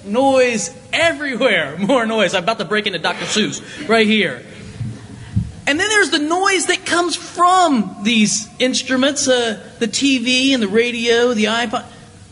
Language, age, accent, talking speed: English, 30-49, American, 150 wpm